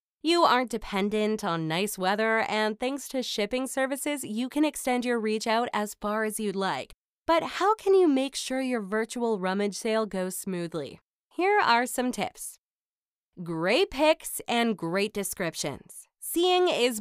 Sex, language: female, English